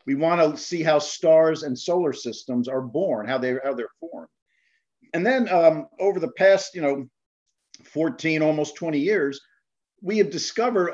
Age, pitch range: 50-69, 145-185 Hz